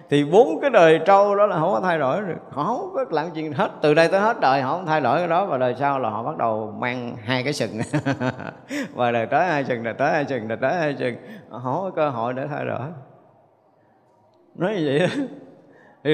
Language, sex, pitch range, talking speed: Vietnamese, male, 125-165 Hz, 240 wpm